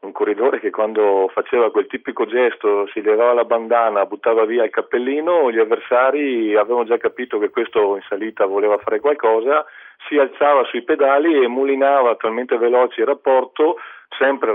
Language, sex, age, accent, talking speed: Italian, male, 40-59, native, 160 wpm